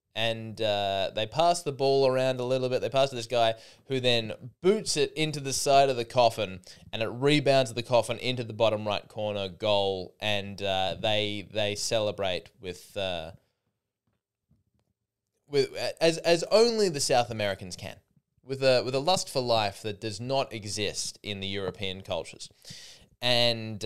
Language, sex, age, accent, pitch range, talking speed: English, male, 20-39, Australian, 105-140 Hz, 170 wpm